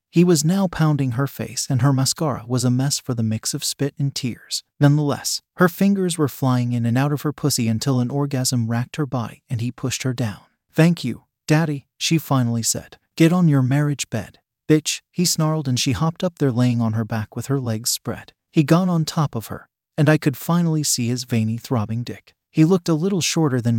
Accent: American